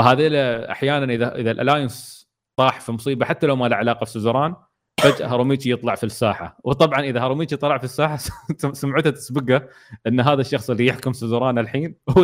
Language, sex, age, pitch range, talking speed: Arabic, male, 30-49, 115-145 Hz, 170 wpm